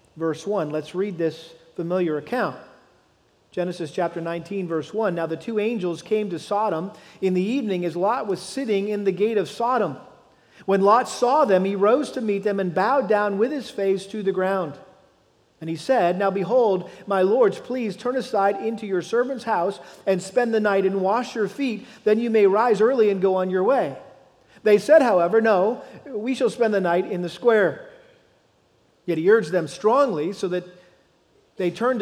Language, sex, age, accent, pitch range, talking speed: English, male, 40-59, American, 180-230 Hz, 190 wpm